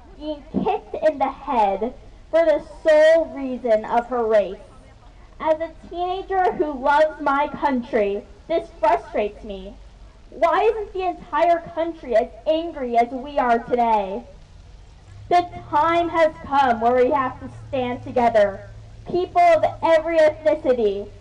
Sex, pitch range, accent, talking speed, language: female, 225-320 Hz, American, 135 wpm, English